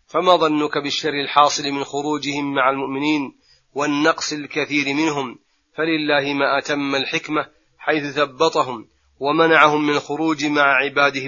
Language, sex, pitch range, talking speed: Arabic, male, 140-160 Hz, 115 wpm